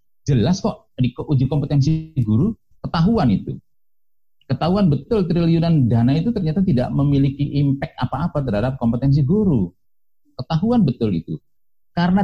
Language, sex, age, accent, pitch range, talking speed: Indonesian, male, 50-69, native, 100-150 Hz, 125 wpm